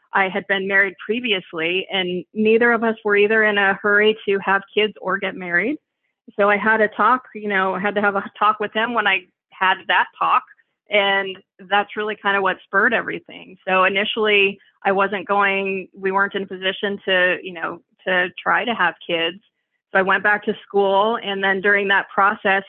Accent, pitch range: American, 190-210 Hz